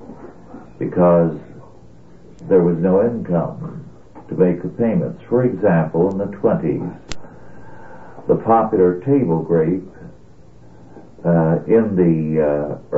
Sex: male